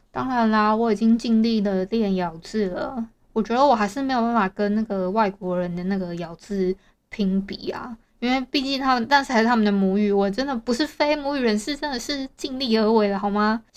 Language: Chinese